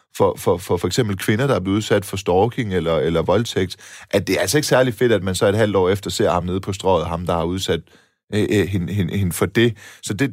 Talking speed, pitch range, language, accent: 260 wpm, 100-130 Hz, Danish, native